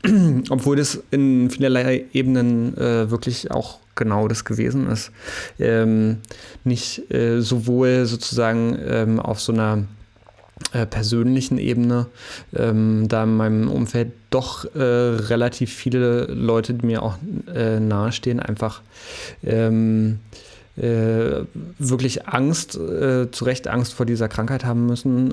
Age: 30-49